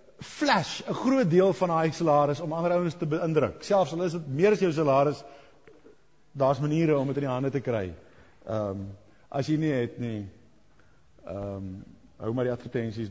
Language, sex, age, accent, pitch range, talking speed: English, male, 50-69, Dutch, 110-150 Hz, 175 wpm